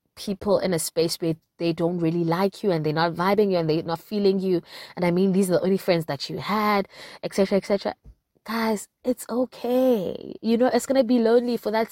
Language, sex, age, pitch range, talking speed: English, female, 20-39, 165-205 Hz, 225 wpm